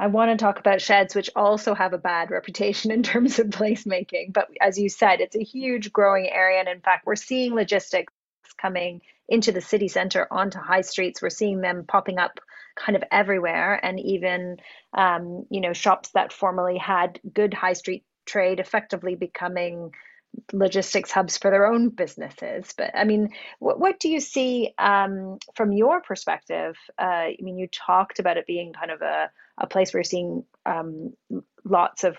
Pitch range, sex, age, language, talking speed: 180-215 Hz, female, 30-49, English, 185 wpm